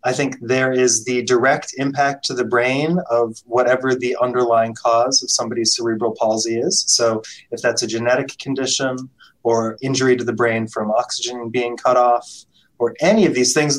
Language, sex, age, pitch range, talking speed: English, male, 30-49, 115-145 Hz, 180 wpm